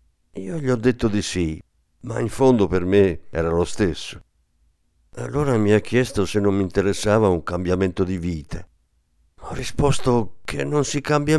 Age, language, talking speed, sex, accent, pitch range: 50-69, Italian, 170 wpm, male, native, 85-120 Hz